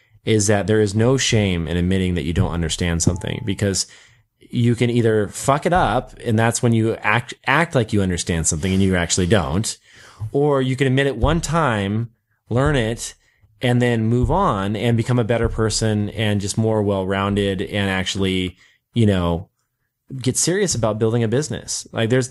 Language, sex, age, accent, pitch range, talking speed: English, male, 20-39, American, 95-120 Hz, 185 wpm